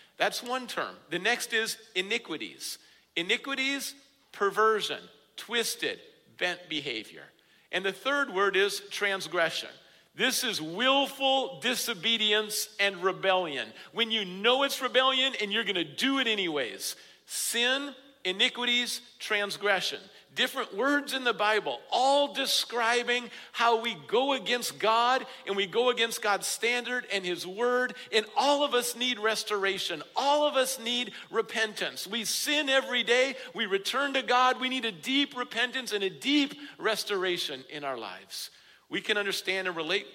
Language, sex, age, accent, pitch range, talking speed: English, male, 50-69, American, 200-260 Hz, 140 wpm